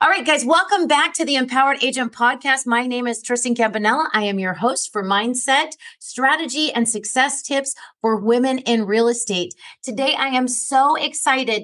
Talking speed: 180 wpm